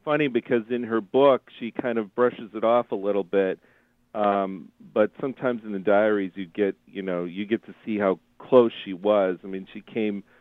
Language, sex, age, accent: English, male, 40-59, American